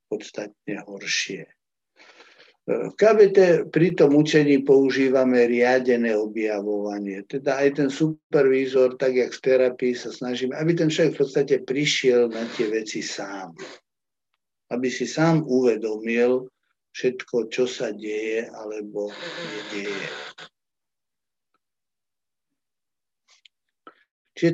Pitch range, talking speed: 110-135 Hz, 100 wpm